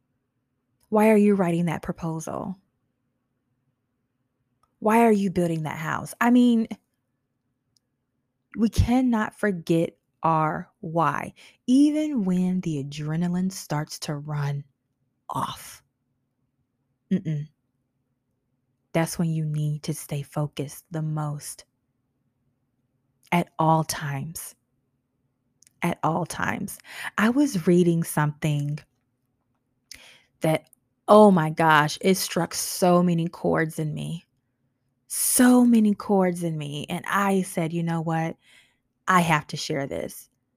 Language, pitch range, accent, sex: English, 130-195 Hz, American, female